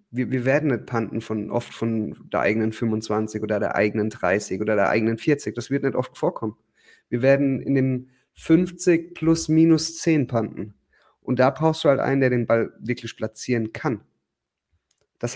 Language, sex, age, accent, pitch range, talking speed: German, male, 30-49, German, 115-150 Hz, 180 wpm